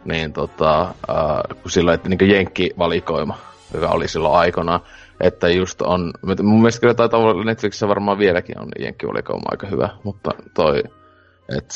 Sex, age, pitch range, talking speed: male, 30-49, 90-105 Hz, 145 wpm